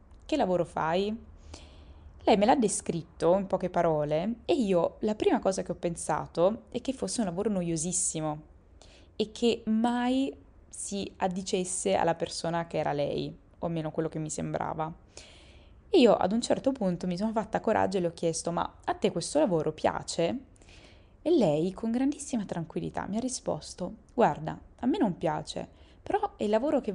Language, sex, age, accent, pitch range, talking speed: Italian, female, 20-39, native, 160-215 Hz, 170 wpm